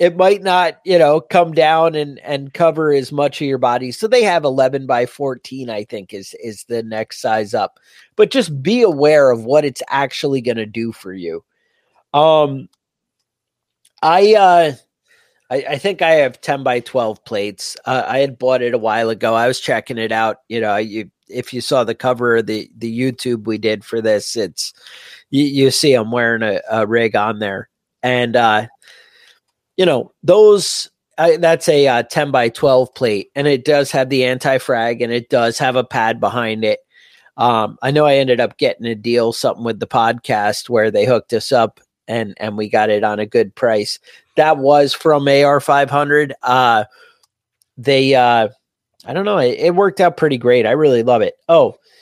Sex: male